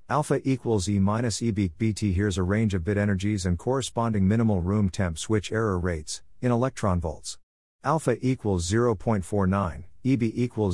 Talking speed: 155 wpm